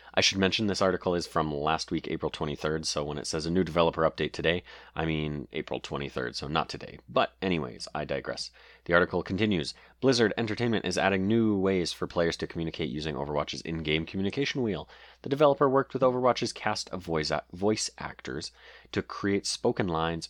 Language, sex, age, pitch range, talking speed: English, male, 30-49, 75-110 Hz, 185 wpm